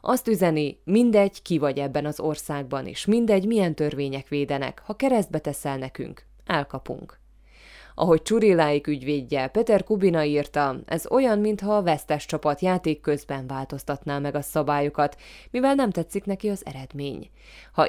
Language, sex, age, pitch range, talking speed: Hungarian, female, 20-39, 145-185 Hz, 145 wpm